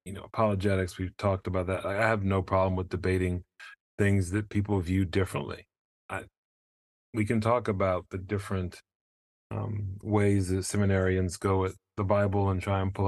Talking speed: 170 wpm